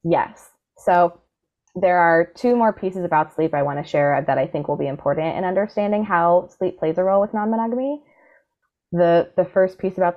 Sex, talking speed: female, 195 wpm